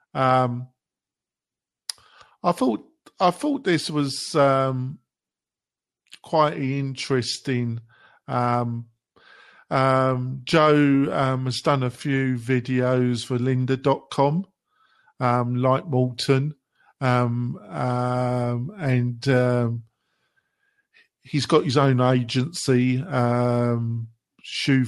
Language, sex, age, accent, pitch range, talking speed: English, male, 50-69, British, 125-145 Hz, 90 wpm